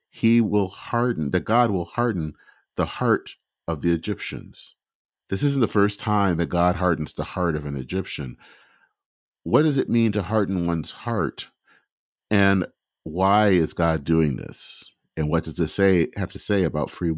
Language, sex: English, male